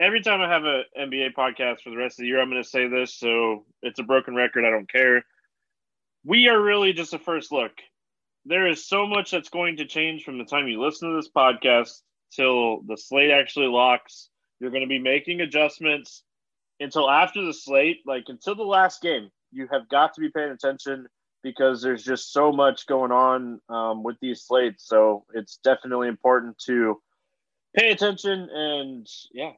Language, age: English, 20-39